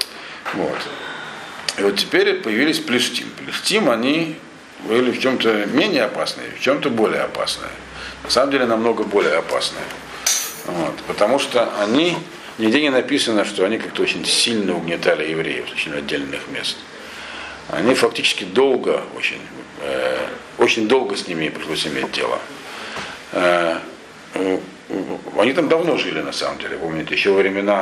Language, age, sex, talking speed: Russian, 50-69, male, 140 wpm